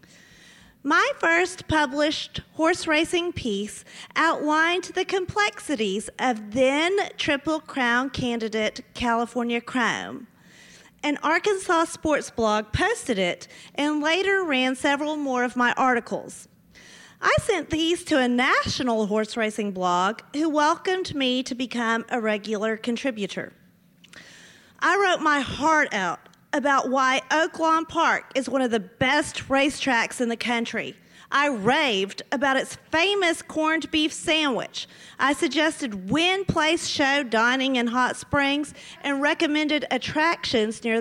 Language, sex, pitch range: English, female, 240-315 Hz